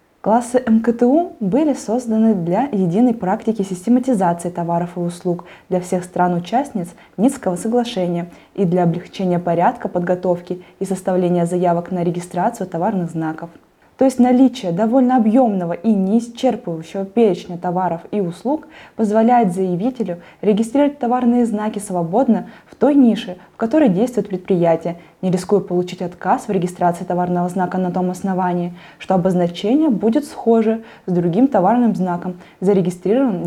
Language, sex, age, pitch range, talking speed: Russian, female, 20-39, 180-240 Hz, 130 wpm